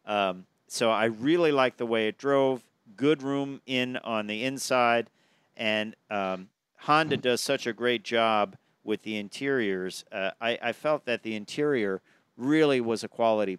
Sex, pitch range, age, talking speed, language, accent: male, 110-130 Hz, 50-69, 165 wpm, English, American